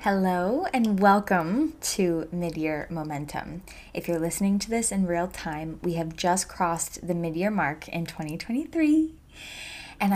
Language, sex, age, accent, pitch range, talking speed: English, female, 20-39, American, 165-200 Hz, 150 wpm